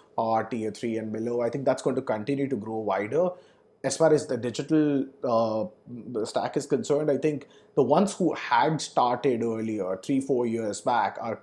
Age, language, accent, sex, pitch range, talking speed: 30-49, English, Indian, male, 125-150 Hz, 190 wpm